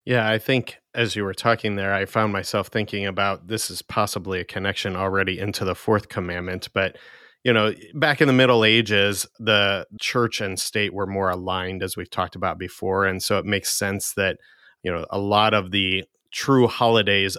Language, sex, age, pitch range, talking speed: English, male, 30-49, 95-110 Hz, 195 wpm